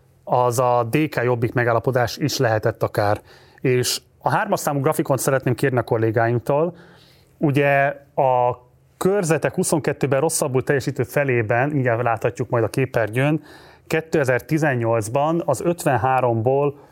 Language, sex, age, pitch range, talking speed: Hungarian, male, 30-49, 120-150 Hz, 115 wpm